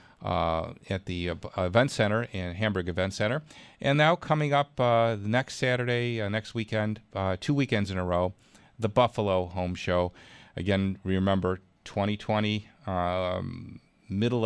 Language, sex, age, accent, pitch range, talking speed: English, male, 40-59, American, 95-120 Hz, 155 wpm